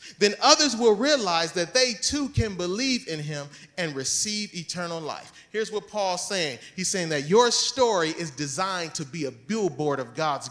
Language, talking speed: English, 185 wpm